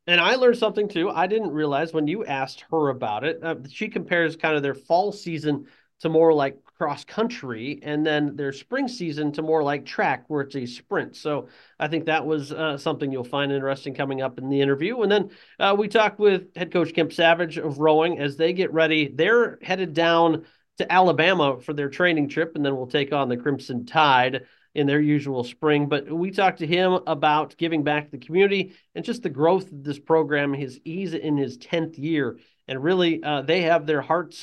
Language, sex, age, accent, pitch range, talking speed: English, male, 40-59, American, 145-180 Hz, 215 wpm